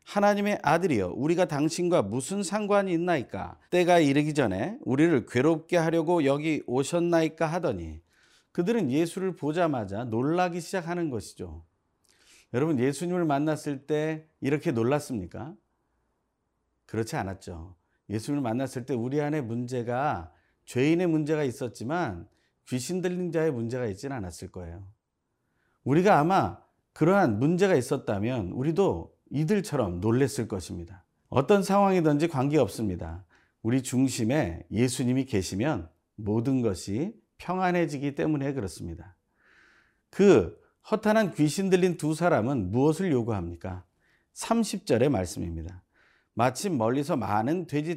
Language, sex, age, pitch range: Korean, male, 40-59, 105-165 Hz